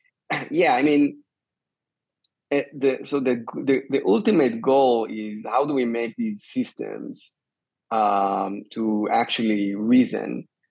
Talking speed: 120 wpm